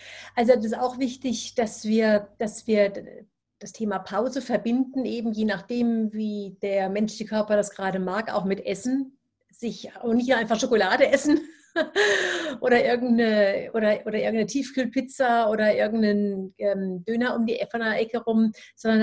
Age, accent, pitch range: 30-49, German, 210-245 Hz